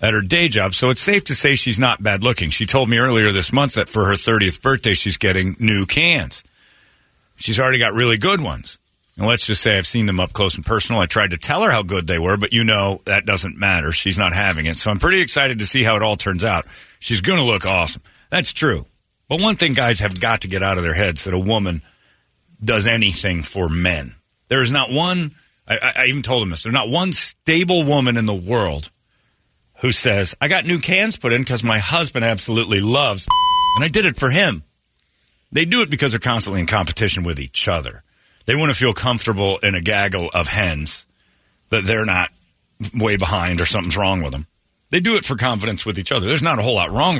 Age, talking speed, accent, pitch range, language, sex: 40-59, 235 wpm, American, 95-130 Hz, English, male